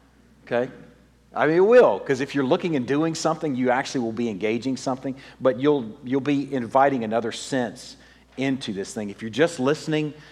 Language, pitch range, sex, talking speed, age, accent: English, 95-140 Hz, male, 185 wpm, 40-59, American